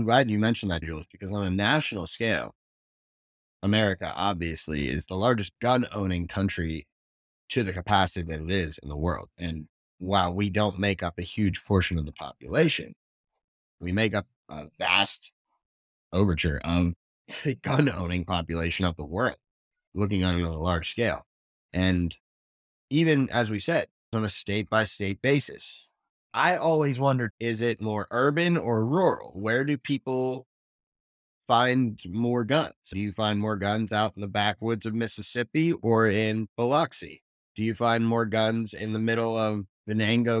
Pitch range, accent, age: 90-120 Hz, American, 30-49